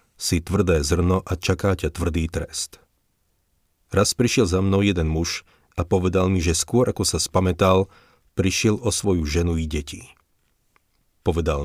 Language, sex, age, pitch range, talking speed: Slovak, male, 40-59, 80-100 Hz, 150 wpm